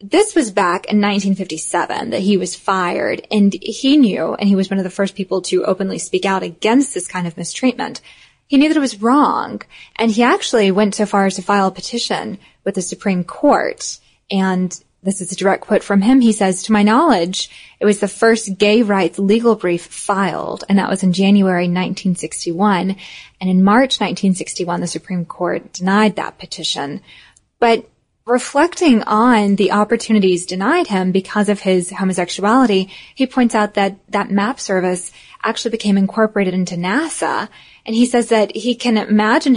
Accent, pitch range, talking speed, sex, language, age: American, 190-230 Hz, 180 wpm, female, English, 10-29